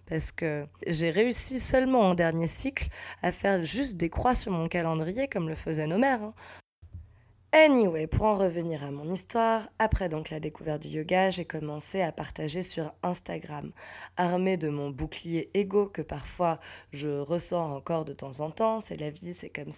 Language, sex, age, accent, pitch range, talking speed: French, female, 20-39, French, 160-190 Hz, 180 wpm